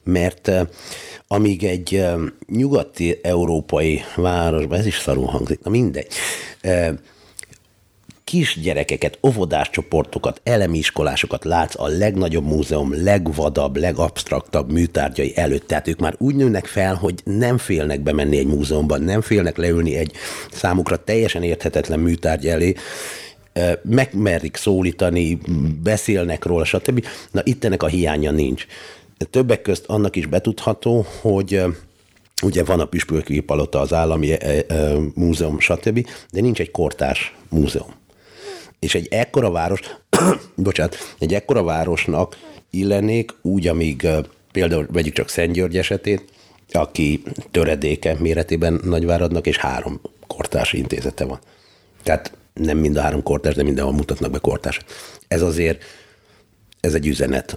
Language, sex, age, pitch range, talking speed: Hungarian, male, 50-69, 80-100 Hz, 125 wpm